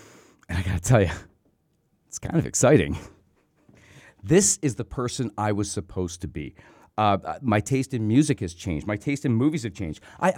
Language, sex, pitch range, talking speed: English, male, 95-145 Hz, 185 wpm